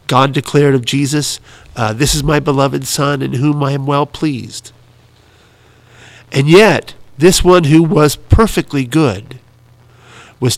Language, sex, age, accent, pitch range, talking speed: English, male, 50-69, American, 125-155 Hz, 140 wpm